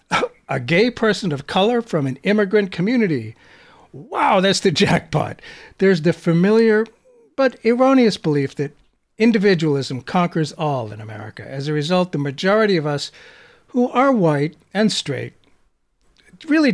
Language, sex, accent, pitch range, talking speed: English, male, American, 140-205 Hz, 135 wpm